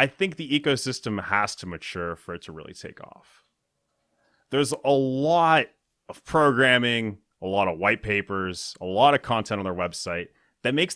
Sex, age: male, 30-49